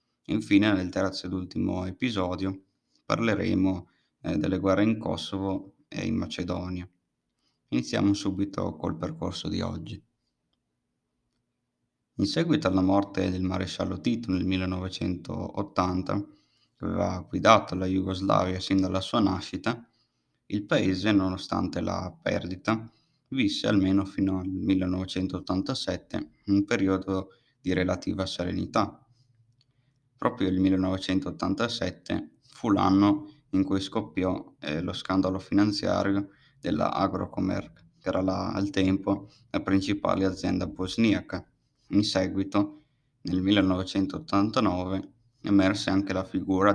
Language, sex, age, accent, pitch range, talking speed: Italian, male, 20-39, native, 95-105 Hz, 110 wpm